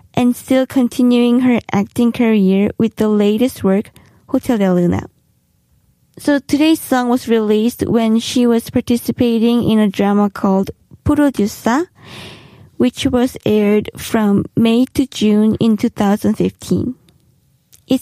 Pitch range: 210-250 Hz